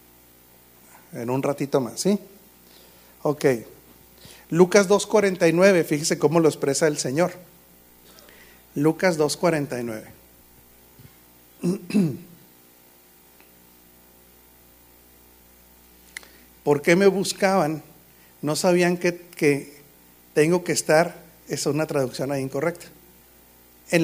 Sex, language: male, Spanish